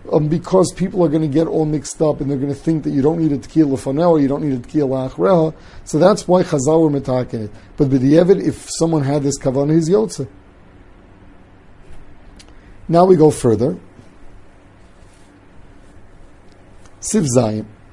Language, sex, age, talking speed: English, male, 50-69, 165 wpm